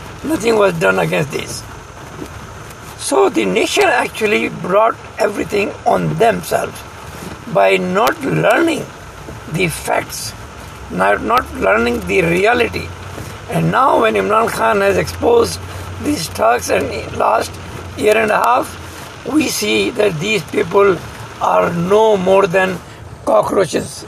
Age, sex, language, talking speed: 60-79, male, English, 120 wpm